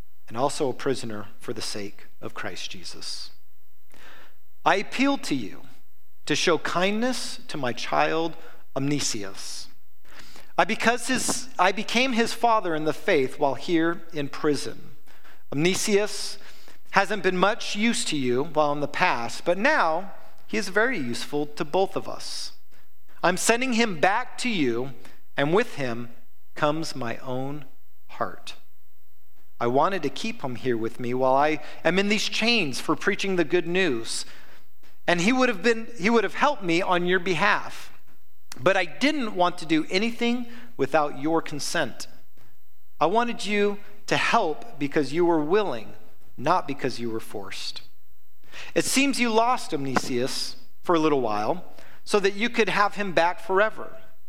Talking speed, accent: 155 wpm, American